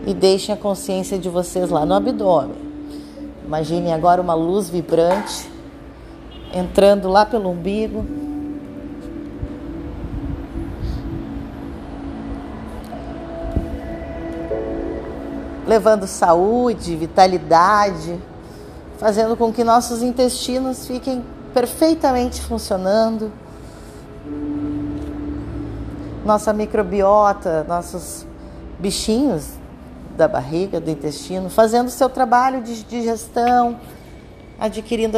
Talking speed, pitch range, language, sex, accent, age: 75 wpm, 155-225 Hz, Portuguese, female, Brazilian, 30-49